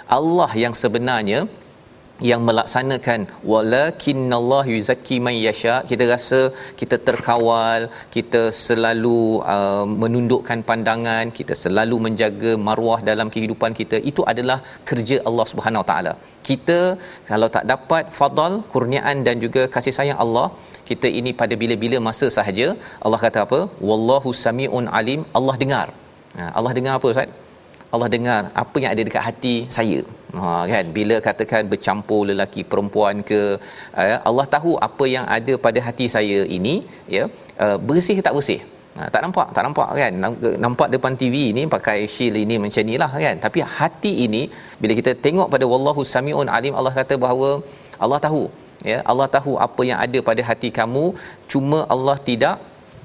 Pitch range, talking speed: 115-135 Hz, 155 wpm